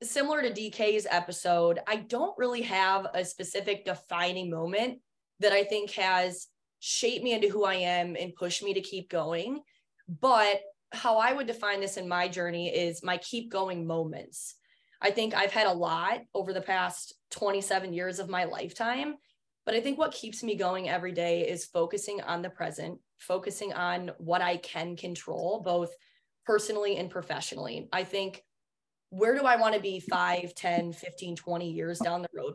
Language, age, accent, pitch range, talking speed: English, 20-39, American, 175-210 Hz, 175 wpm